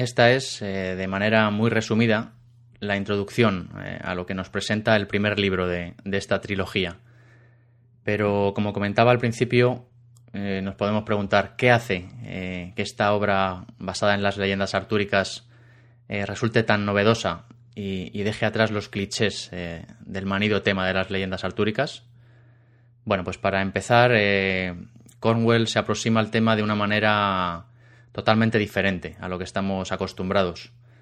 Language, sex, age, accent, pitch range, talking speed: Spanish, male, 20-39, Spanish, 100-120 Hz, 155 wpm